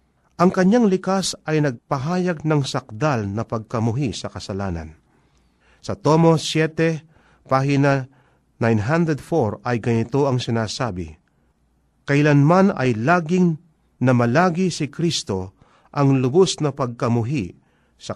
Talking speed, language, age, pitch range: 105 wpm, Filipino, 40-59, 115-160 Hz